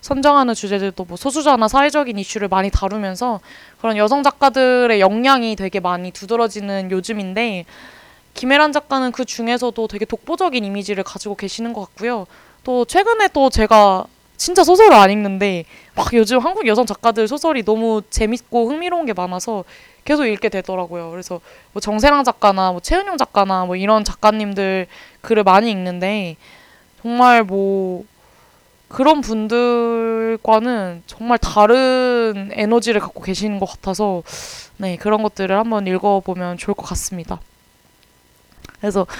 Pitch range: 195-240 Hz